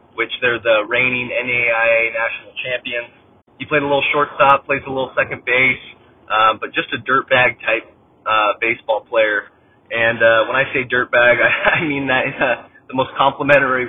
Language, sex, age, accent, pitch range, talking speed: English, male, 20-39, American, 115-130 Hz, 165 wpm